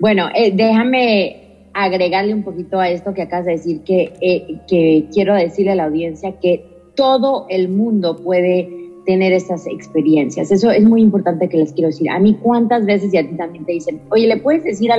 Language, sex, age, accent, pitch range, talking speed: Spanish, female, 30-49, Mexican, 175-225 Hz, 200 wpm